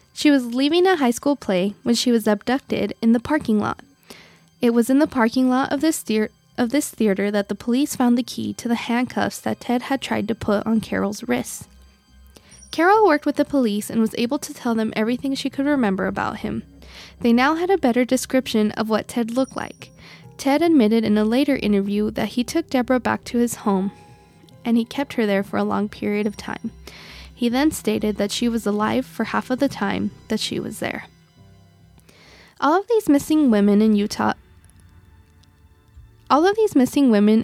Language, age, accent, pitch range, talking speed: English, 20-39, American, 210-265 Hz, 200 wpm